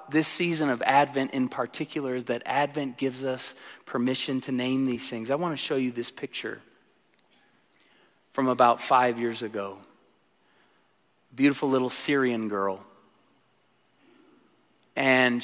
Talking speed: 130 wpm